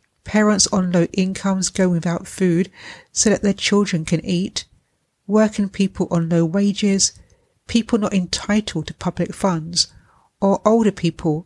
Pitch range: 165-200 Hz